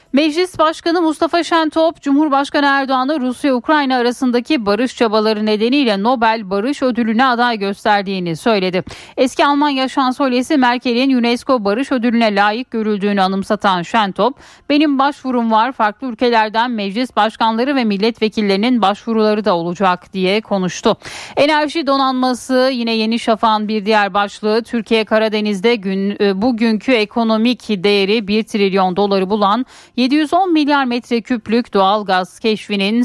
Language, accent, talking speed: Turkish, native, 125 wpm